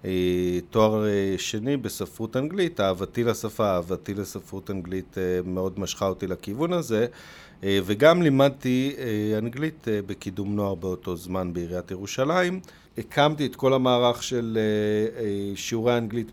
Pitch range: 100-140 Hz